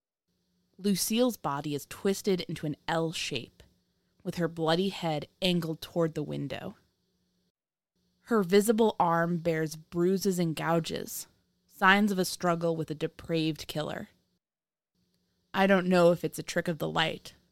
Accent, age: American, 20-39